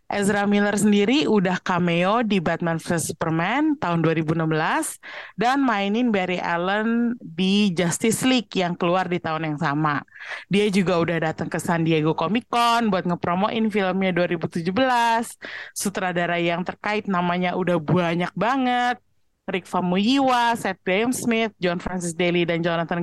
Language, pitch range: Indonesian, 175-230 Hz